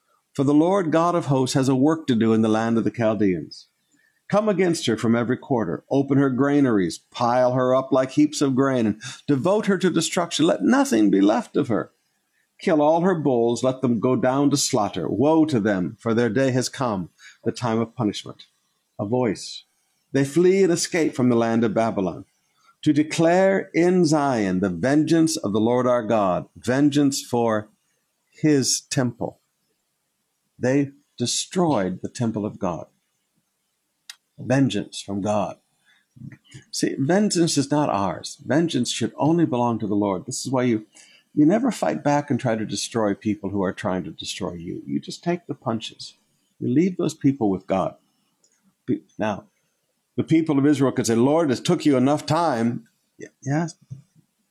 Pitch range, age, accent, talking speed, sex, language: 115-155 Hz, 50-69, American, 175 wpm, male, English